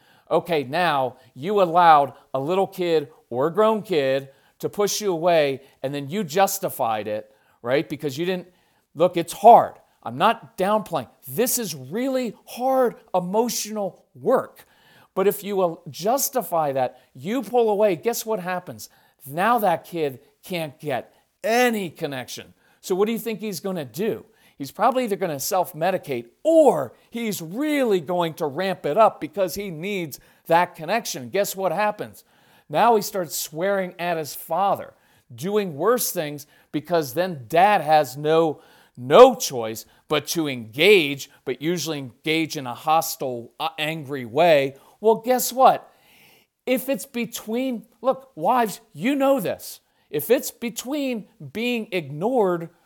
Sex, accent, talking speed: male, American, 150 wpm